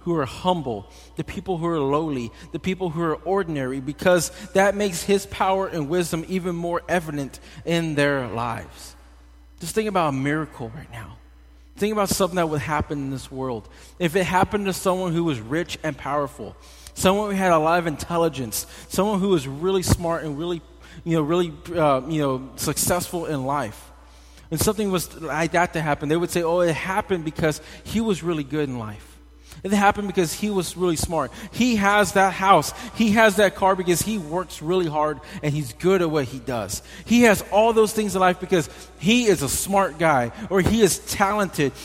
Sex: male